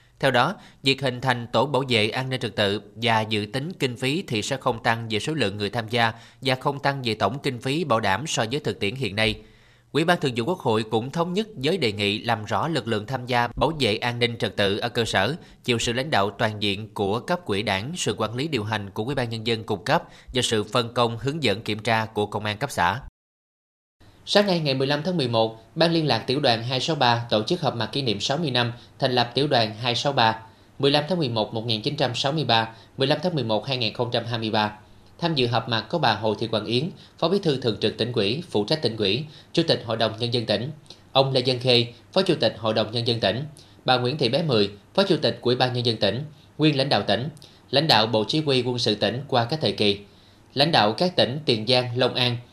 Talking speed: 245 wpm